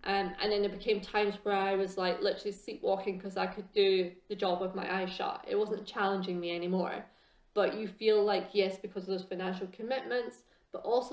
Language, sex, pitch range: English, female, 190-215 Hz